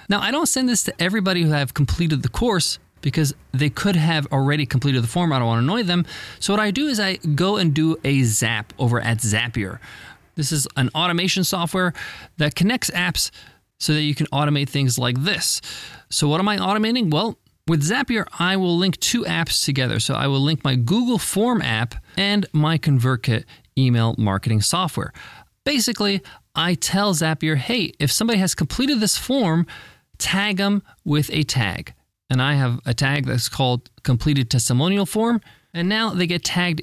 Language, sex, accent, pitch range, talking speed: English, male, American, 130-190 Hz, 185 wpm